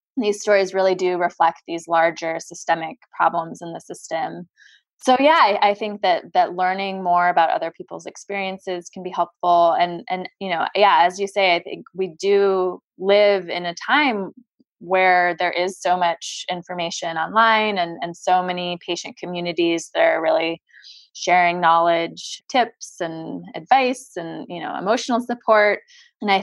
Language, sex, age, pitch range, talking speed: English, female, 20-39, 170-200 Hz, 165 wpm